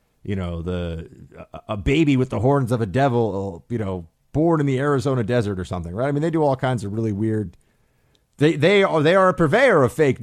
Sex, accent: male, American